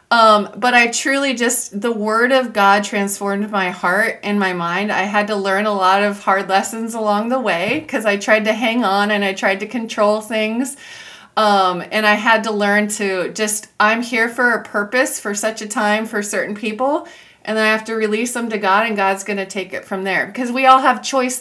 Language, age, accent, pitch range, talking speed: English, 30-49, American, 195-235 Hz, 225 wpm